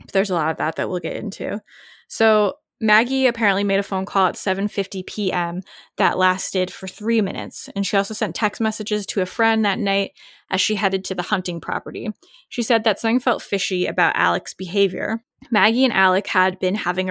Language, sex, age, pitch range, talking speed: English, female, 10-29, 185-220 Hz, 200 wpm